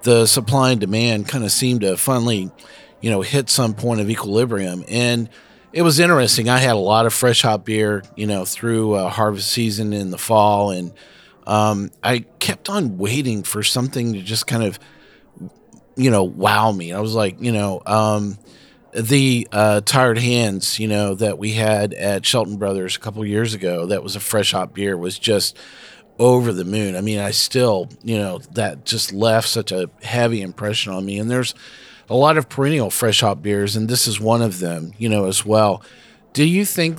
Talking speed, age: 200 wpm, 40-59